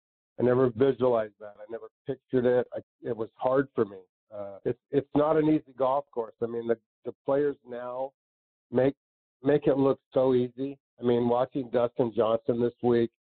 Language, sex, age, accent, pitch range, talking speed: English, male, 50-69, American, 115-145 Hz, 185 wpm